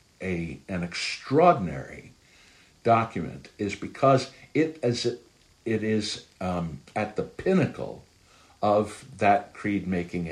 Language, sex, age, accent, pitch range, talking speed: English, male, 60-79, American, 95-135 Hz, 110 wpm